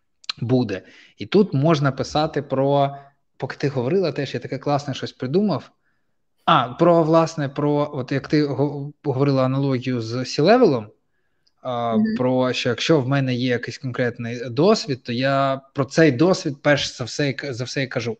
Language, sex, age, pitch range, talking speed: Ukrainian, male, 20-39, 120-145 Hz, 160 wpm